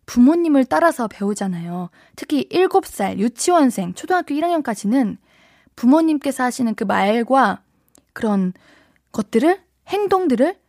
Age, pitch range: 20-39, 215-320 Hz